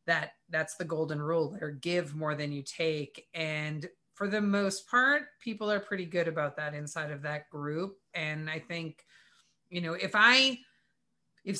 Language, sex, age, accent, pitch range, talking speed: English, female, 30-49, American, 160-200 Hz, 175 wpm